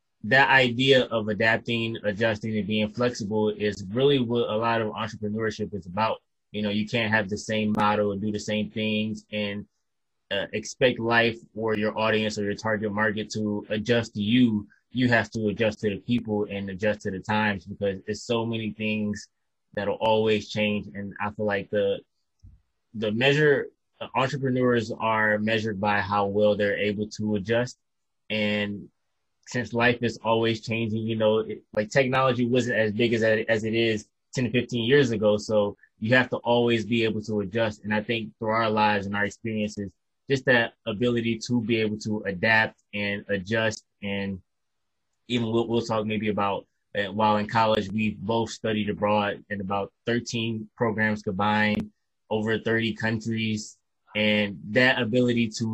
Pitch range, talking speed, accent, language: 105-115 Hz, 170 wpm, American, English